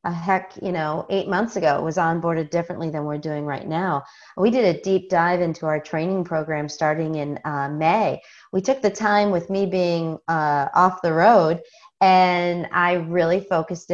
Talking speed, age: 185 wpm, 30-49